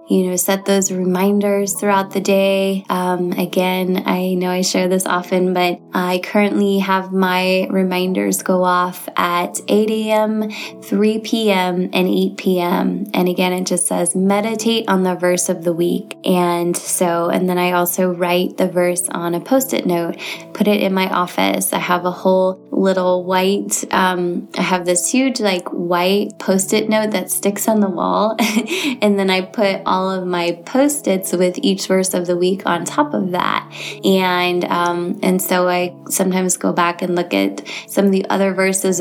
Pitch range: 180-195 Hz